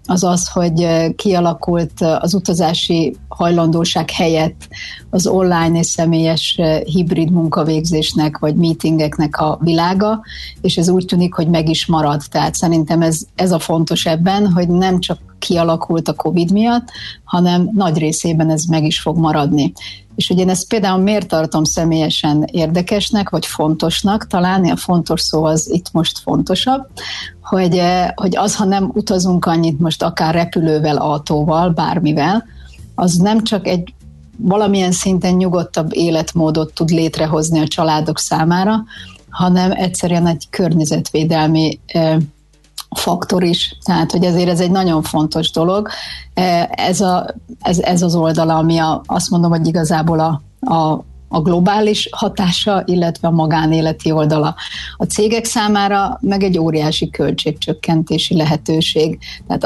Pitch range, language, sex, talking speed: 160-180 Hz, Hungarian, female, 135 wpm